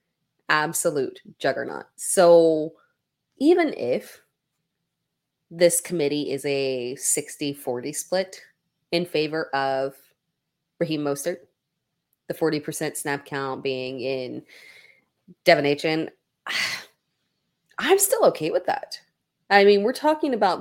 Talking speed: 100 wpm